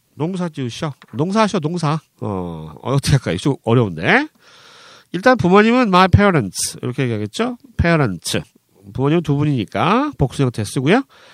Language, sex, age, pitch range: Korean, male, 40-59, 130-200 Hz